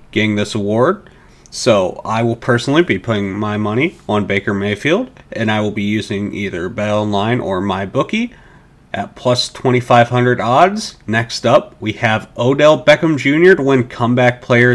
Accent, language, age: American, English, 40-59